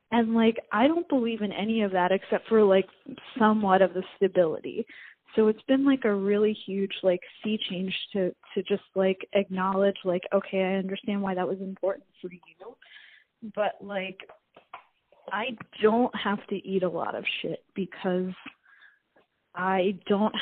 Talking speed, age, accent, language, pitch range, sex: 160 wpm, 20-39, American, English, 195-270 Hz, female